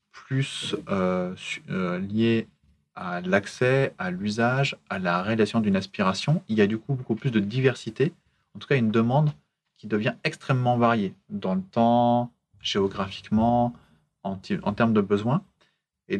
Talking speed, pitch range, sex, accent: 155 wpm, 105-145 Hz, male, French